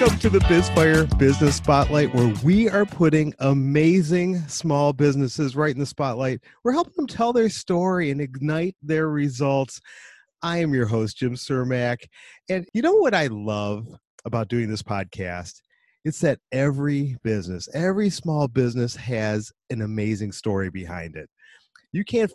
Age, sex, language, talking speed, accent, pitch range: 40-59, male, English, 155 wpm, American, 110-150 Hz